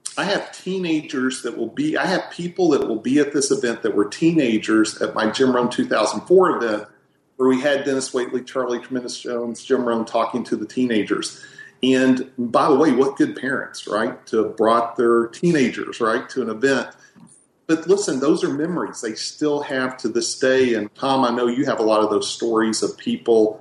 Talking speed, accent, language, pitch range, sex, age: 200 wpm, American, English, 110-135 Hz, male, 40-59